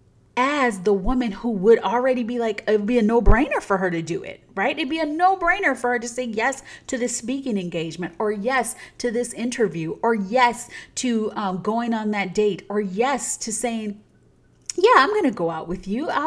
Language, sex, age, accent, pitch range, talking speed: English, female, 30-49, American, 215-285 Hz, 205 wpm